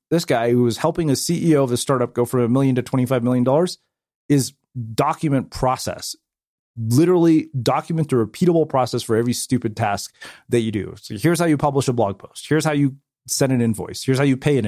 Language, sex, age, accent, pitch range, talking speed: English, male, 30-49, American, 115-145 Hz, 210 wpm